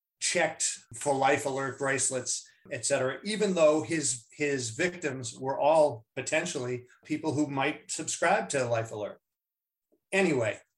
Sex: male